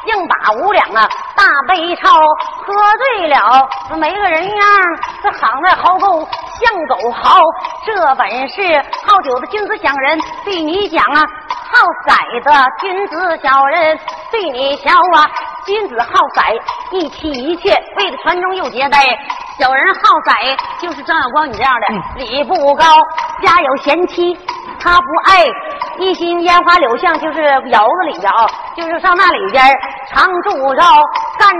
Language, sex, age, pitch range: Chinese, female, 30-49, 290-400 Hz